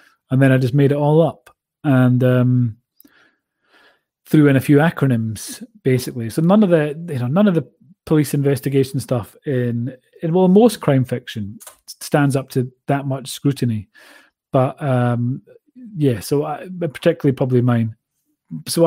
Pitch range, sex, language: 125-160 Hz, male, English